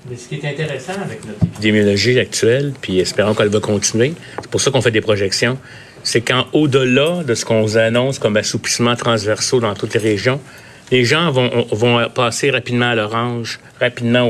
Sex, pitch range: male, 110-135 Hz